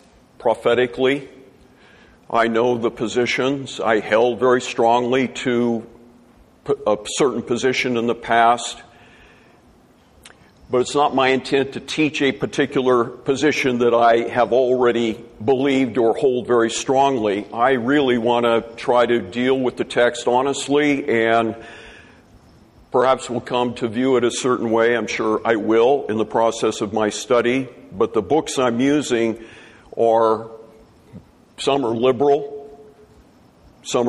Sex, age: male, 50-69